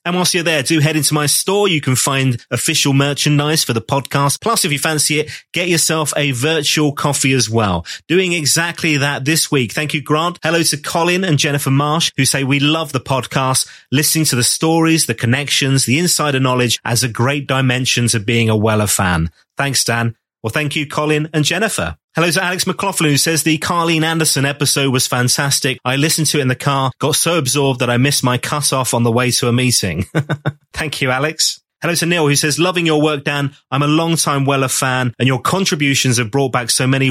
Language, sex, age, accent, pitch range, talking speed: English, male, 30-49, British, 130-160 Hz, 215 wpm